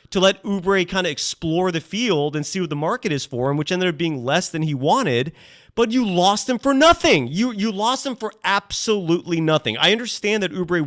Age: 30-49